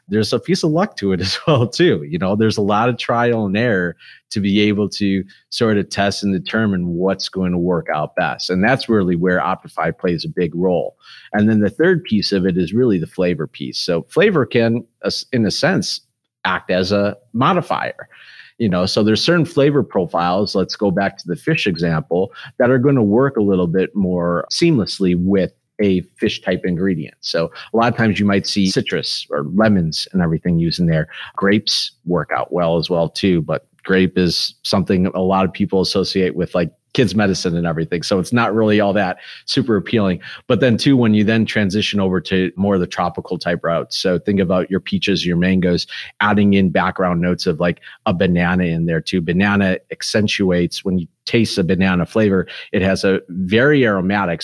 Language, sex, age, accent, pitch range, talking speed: English, male, 30-49, American, 90-105 Hz, 205 wpm